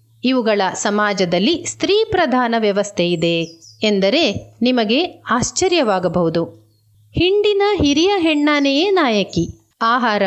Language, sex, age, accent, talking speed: Kannada, female, 30-49, native, 75 wpm